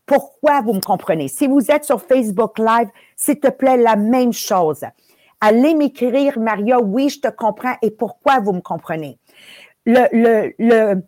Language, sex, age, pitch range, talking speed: English, female, 50-69, 205-275 Hz, 170 wpm